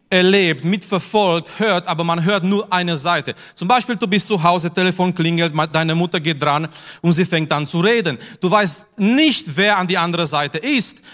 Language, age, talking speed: German, 30-49, 195 wpm